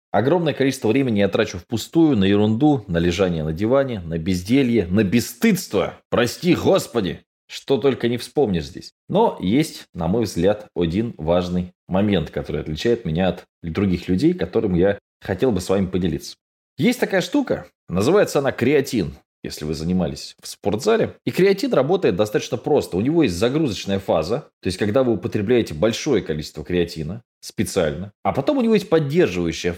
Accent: native